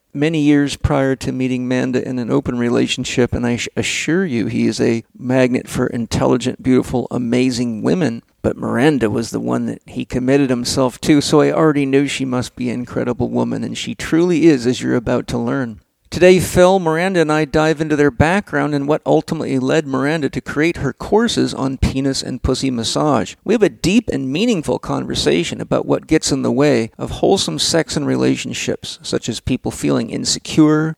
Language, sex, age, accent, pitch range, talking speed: English, male, 50-69, American, 125-155 Hz, 190 wpm